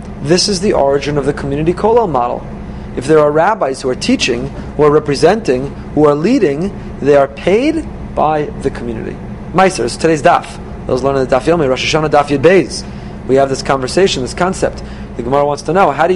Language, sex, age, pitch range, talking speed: English, male, 30-49, 130-170 Hz, 195 wpm